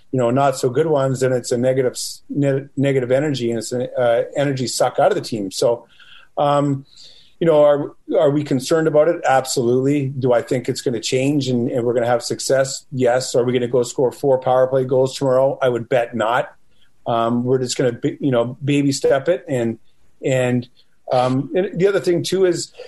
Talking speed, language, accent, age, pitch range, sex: 215 wpm, English, American, 40-59, 125-145 Hz, male